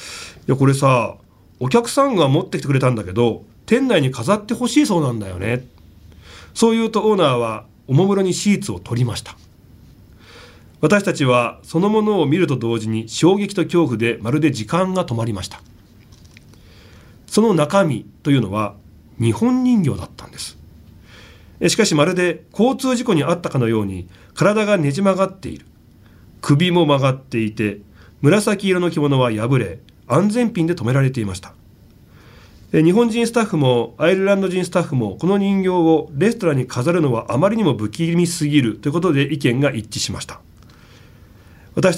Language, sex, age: Japanese, male, 40-59